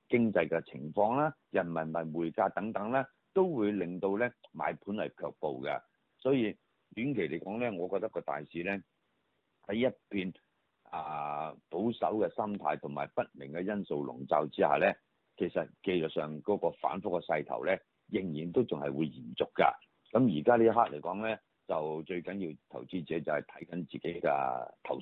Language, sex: Chinese, male